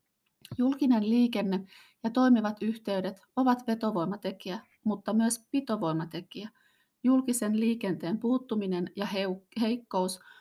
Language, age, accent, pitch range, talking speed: Finnish, 30-49, native, 195-245 Hz, 85 wpm